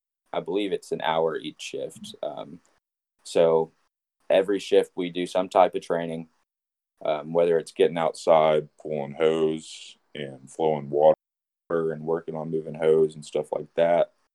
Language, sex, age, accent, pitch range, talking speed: English, male, 20-39, American, 80-90 Hz, 150 wpm